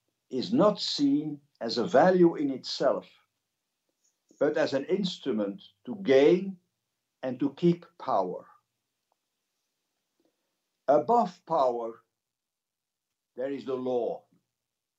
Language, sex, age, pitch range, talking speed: Polish, male, 60-79, 145-180 Hz, 95 wpm